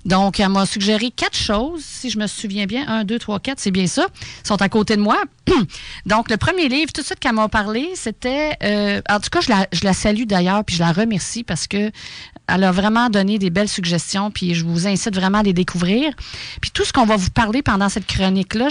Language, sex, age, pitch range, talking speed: French, female, 40-59, 185-245 Hz, 245 wpm